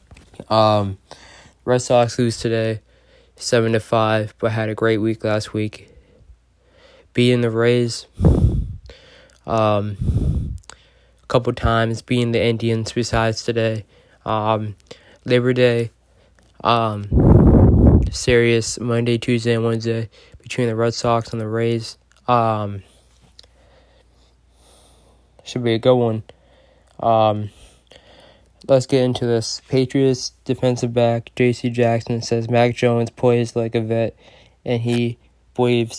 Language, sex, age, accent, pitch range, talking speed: English, male, 20-39, American, 110-120 Hz, 115 wpm